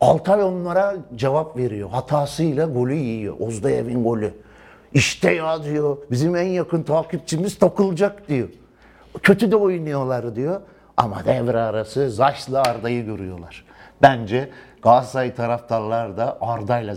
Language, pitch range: Turkish, 130-190 Hz